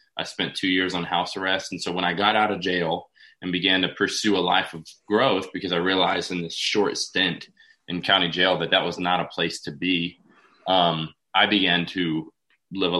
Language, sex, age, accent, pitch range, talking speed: English, male, 20-39, American, 90-105 Hz, 215 wpm